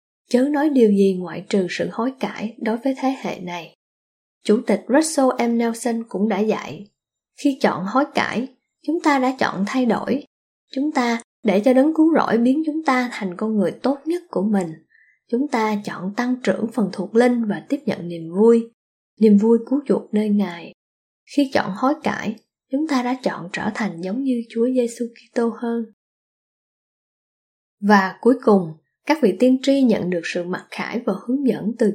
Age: 20-39